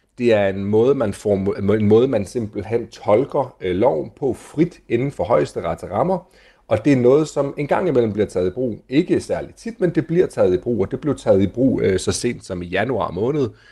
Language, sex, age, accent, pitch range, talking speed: Danish, male, 30-49, native, 100-140 Hz, 230 wpm